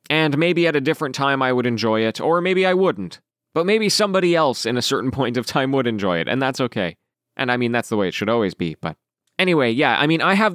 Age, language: 20-39, English